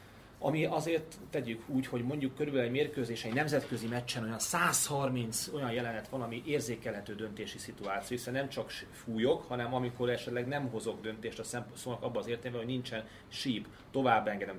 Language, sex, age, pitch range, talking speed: Hungarian, male, 30-49, 110-135 Hz, 165 wpm